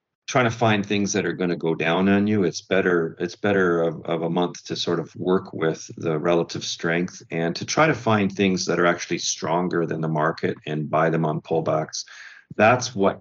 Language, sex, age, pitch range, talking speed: English, male, 40-59, 85-110 Hz, 220 wpm